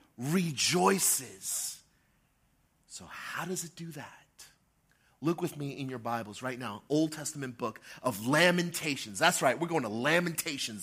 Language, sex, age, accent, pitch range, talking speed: English, male, 30-49, American, 180-240 Hz, 145 wpm